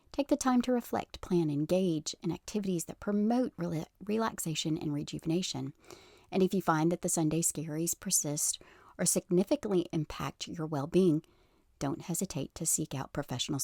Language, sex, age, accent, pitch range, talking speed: English, female, 40-59, American, 155-185 Hz, 150 wpm